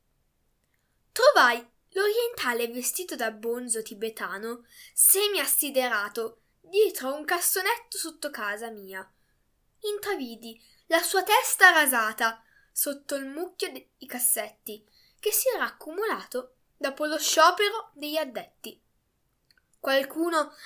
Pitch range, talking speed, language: 235-350 Hz, 95 wpm, Italian